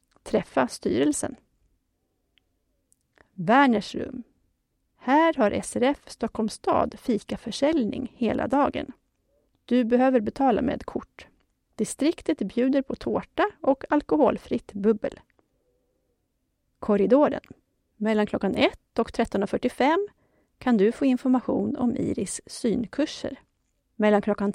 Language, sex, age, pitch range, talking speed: Swedish, female, 30-49, 215-290 Hz, 95 wpm